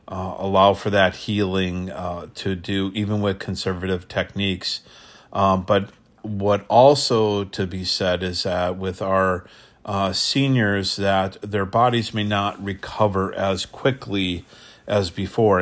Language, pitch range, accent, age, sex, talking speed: English, 95-105 Hz, American, 40-59, male, 135 wpm